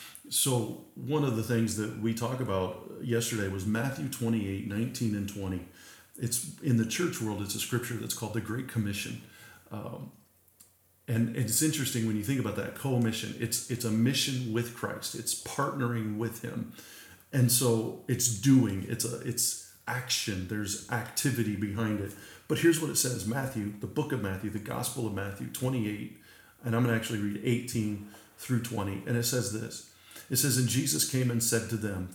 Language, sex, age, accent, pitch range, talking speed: English, male, 40-59, American, 105-125 Hz, 185 wpm